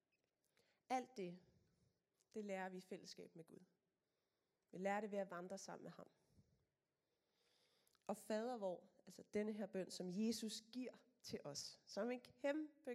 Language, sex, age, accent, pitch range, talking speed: Danish, female, 30-49, native, 175-215 Hz, 150 wpm